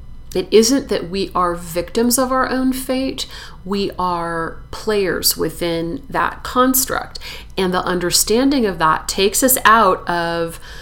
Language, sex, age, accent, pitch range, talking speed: English, female, 30-49, American, 170-200 Hz, 140 wpm